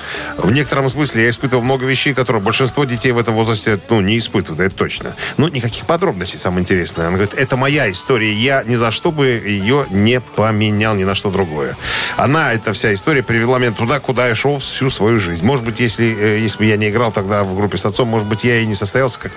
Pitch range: 100-125 Hz